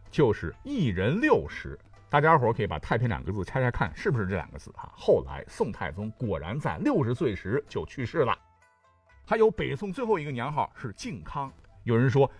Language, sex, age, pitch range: Chinese, male, 50-69, 100-150 Hz